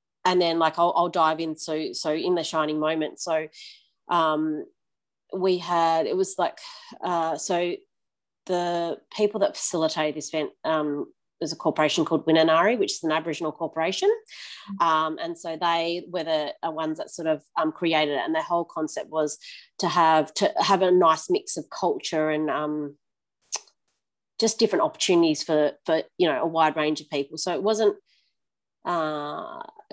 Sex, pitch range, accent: female, 155-190 Hz, Australian